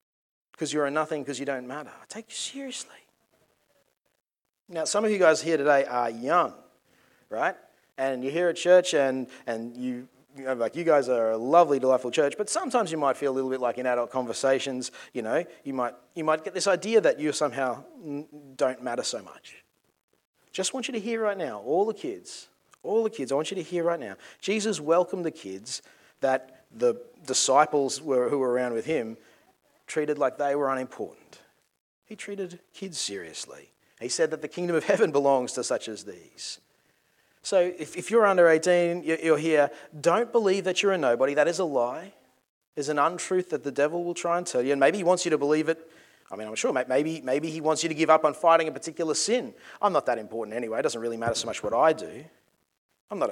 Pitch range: 130-180 Hz